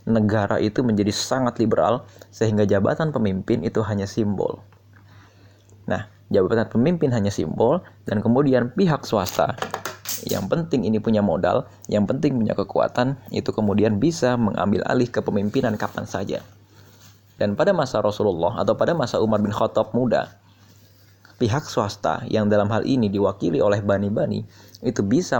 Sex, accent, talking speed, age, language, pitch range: male, native, 140 wpm, 20-39, Indonesian, 100-120 Hz